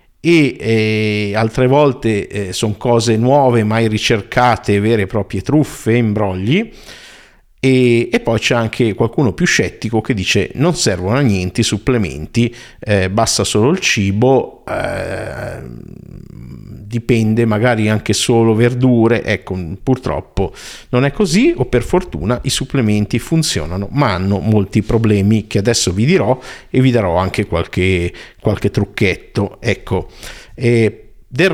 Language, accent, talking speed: Italian, native, 130 wpm